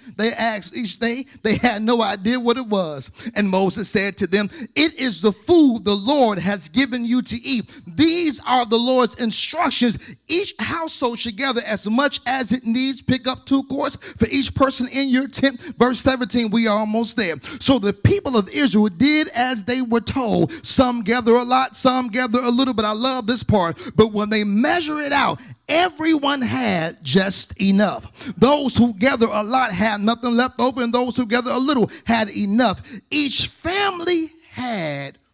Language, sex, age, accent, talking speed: English, male, 40-59, American, 185 wpm